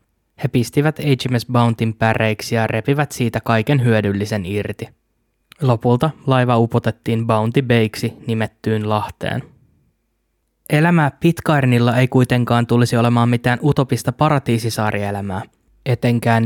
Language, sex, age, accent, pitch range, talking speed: Finnish, male, 20-39, native, 110-125 Hz, 100 wpm